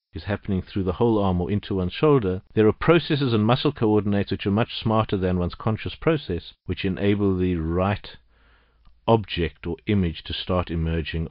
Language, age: English, 50-69